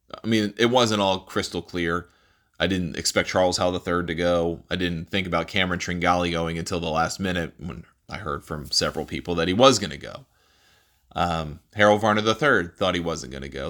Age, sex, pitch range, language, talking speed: 30-49, male, 85-105 Hz, English, 205 wpm